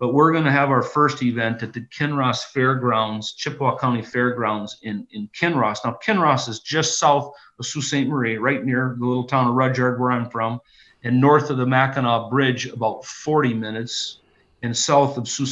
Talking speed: 195 wpm